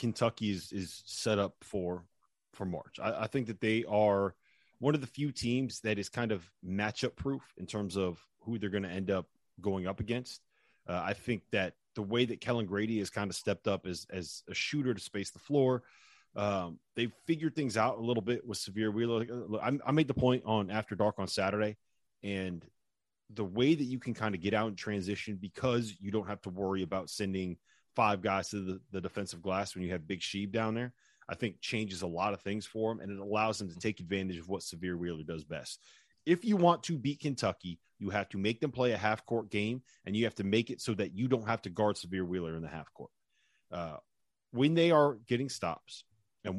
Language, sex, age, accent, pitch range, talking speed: English, male, 30-49, American, 95-120 Hz, 230 wpm